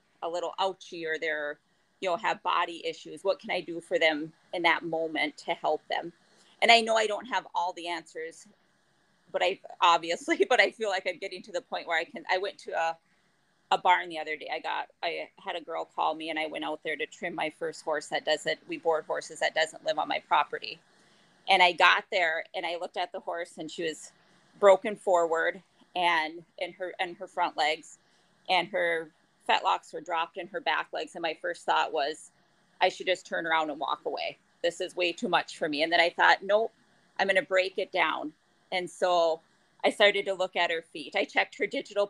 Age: 30-49